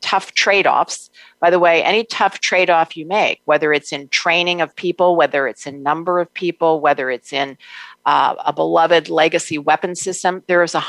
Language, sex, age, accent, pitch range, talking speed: English, female, 50-69, American, 150-175 Hz, 180 wpm